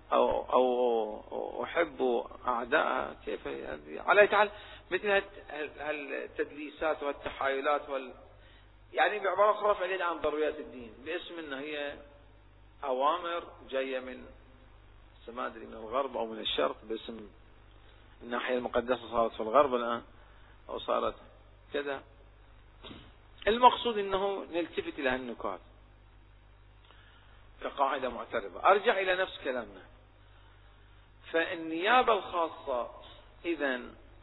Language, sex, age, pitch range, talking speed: Arabic, male, 40-59, 105-165 Hz, 95 wpm